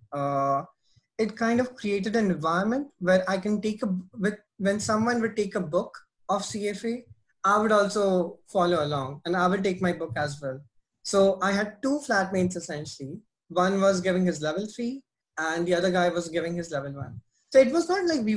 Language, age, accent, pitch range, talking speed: English, 20-39, Indian, 160-210 Hz, 200 wpm